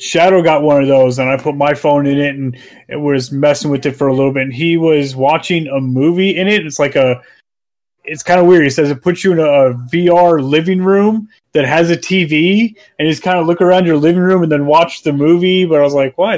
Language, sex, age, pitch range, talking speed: English, male, 30-49, 140-180 Hz, 255 wpm